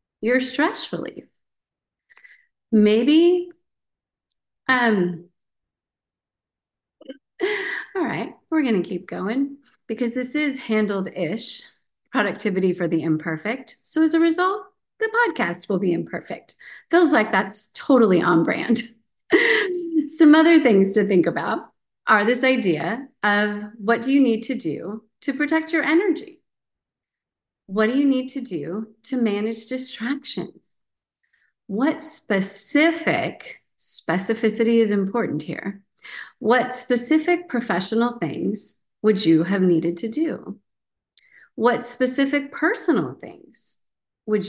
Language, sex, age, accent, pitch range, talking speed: English, female, 30-49, American, 190-280 Hz, 115 wpm